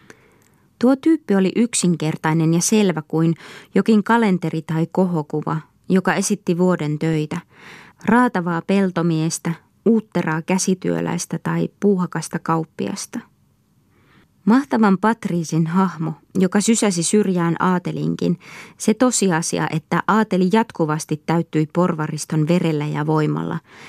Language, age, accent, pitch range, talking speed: Finnish, 20-39, native, 155-190 Hz, 100 wpm